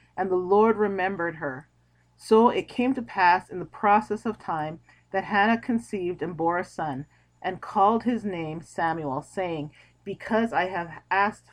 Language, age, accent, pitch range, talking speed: English, 30-49, American, 185-275 Hz, 165 wpm